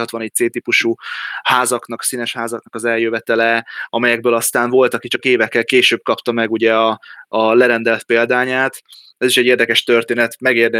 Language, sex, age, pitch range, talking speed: Hungarian, male, 20-39, 110-125 Hz, 155 wpm